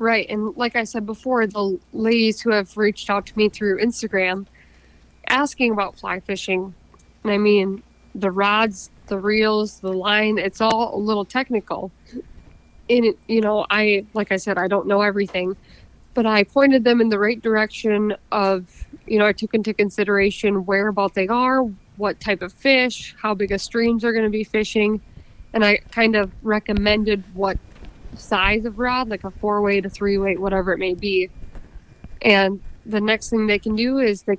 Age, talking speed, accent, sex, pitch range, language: 20-39, 185 wpm, American, female, 195-225 Hz, English